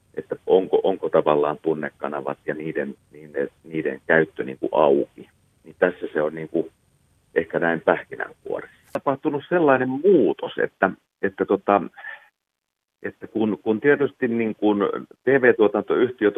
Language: Finnish